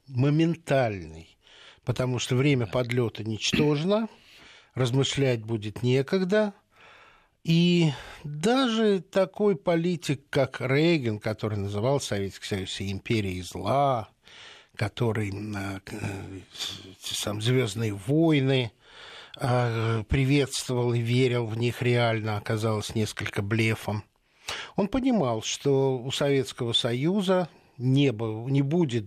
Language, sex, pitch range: Russian, male, 110-150 Hz